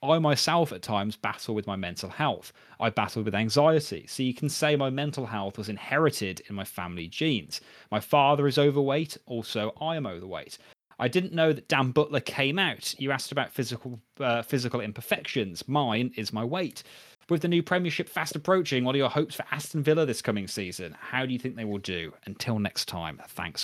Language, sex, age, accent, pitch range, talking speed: English, male, 30-49, British, 110-145 Hz, 205 wpm